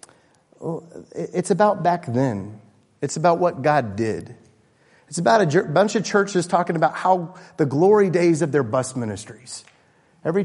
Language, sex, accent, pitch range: English, male, American, 120-175 Hz